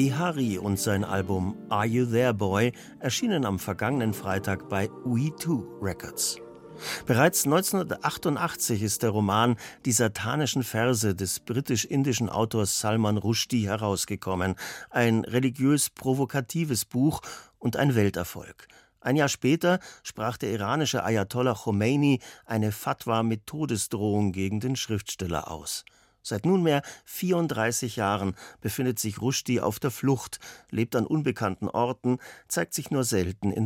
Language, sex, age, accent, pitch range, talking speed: German, male, 50-69, German, 105-135 Hz, 125 wpm